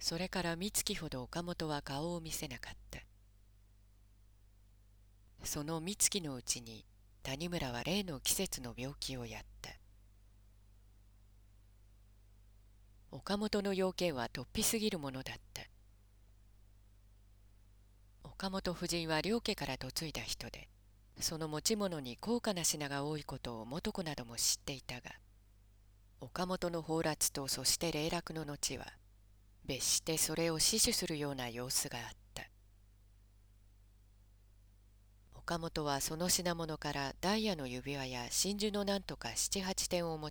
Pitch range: 100-165 Hz